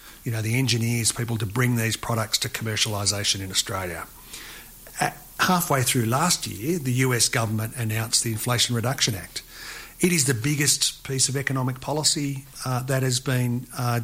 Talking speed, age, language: 165 wpm, 50-69, English